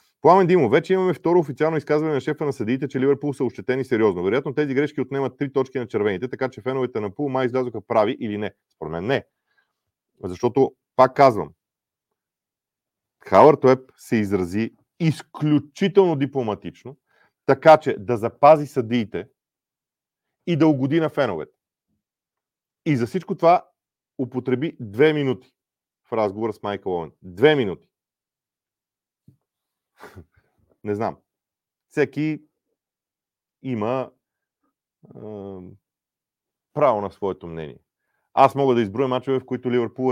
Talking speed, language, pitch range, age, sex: 130 wpm, Bulgarian, 110-145 Hz, 40-59, male